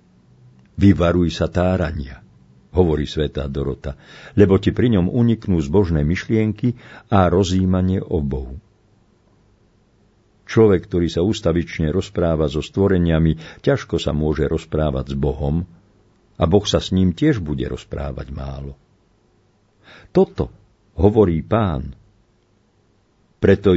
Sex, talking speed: male, 110 wpm